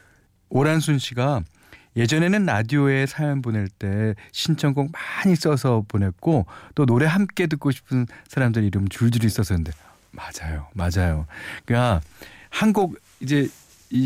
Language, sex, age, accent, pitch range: Korean, male, 40-59, native, 95-145 Hz